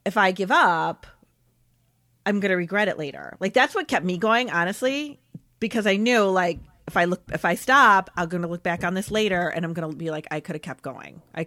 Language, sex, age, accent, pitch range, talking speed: English, female, 30-49, American, 165-215 Hz, 230 wpm